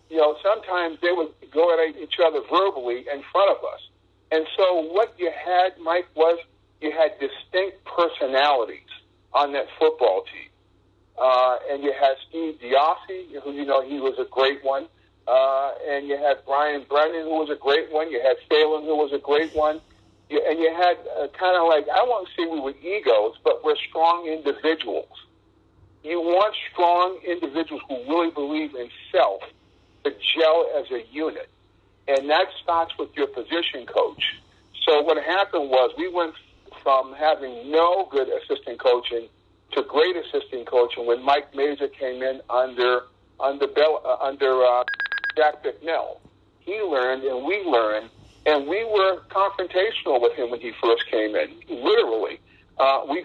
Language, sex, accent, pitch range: English, male, American, 140-190 Hz